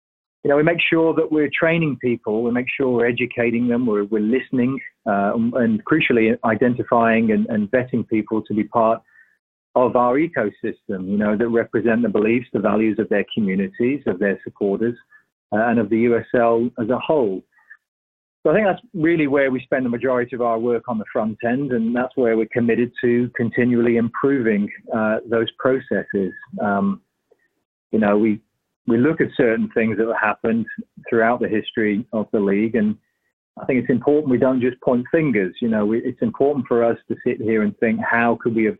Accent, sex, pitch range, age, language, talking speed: British, male, 110-130 Hz, 40-59, English, 190 wpm